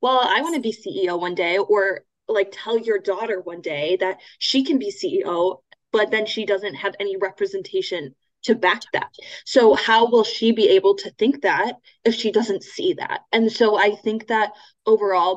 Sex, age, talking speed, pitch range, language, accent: female, 10-29, 195 wpm, 190-260 Hz, English, American